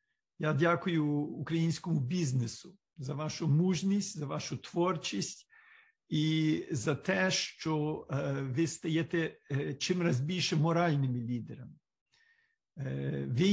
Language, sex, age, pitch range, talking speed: Ukrainian, male, 50-69, 140-175 Hz, 100 wpm